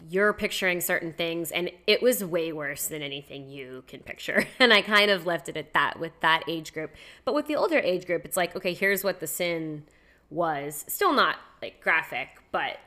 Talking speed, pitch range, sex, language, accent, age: 210 wpm, 165-210 Hz, female, English, American, 20-39